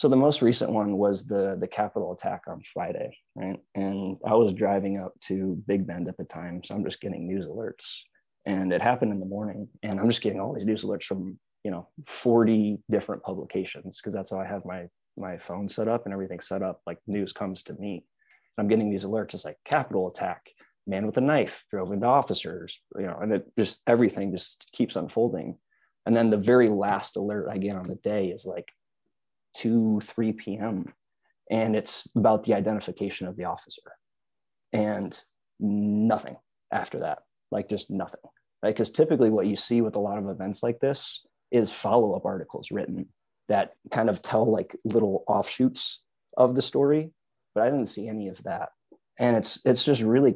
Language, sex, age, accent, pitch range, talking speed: English, male, 20-39, American, 95-115 Hz, 195 wpm